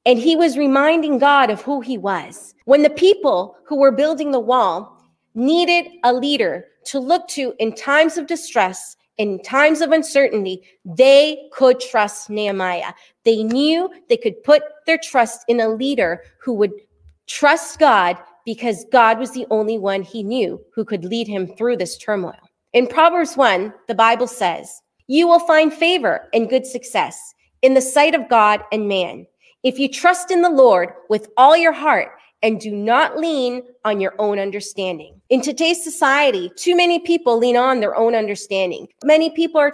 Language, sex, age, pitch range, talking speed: English, female, 30-49, 225-305 Hz, 175 wpm